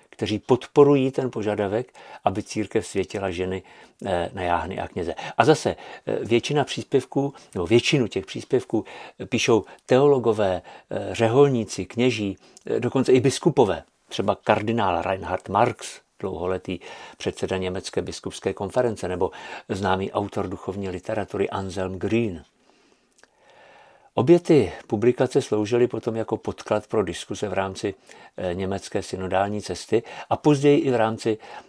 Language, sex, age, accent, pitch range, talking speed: Czech, male, 50-69, native, 95-125 Hz, 115 wpm